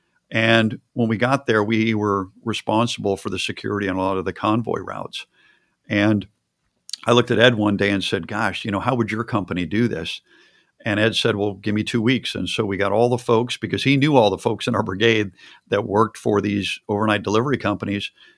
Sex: male